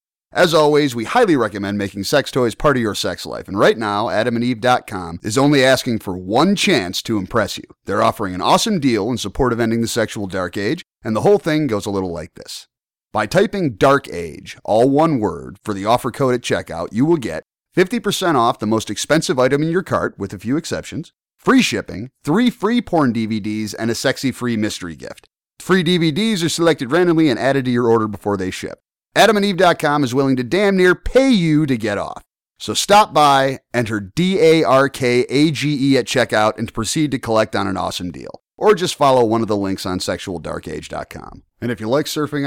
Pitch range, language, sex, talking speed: 110-170 Hz, English, male, 200 wpm